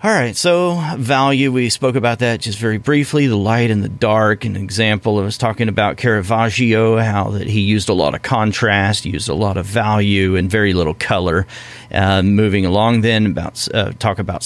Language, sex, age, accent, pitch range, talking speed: English, male, 40-59, American, 95-120 Hz, 200 wpm